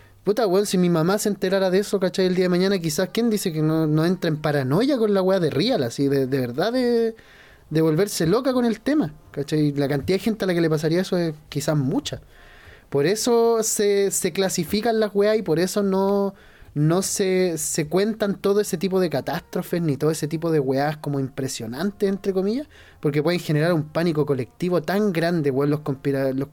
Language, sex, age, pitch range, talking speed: Spanish, male, 20-39, 150-205 Hz, 220 wpm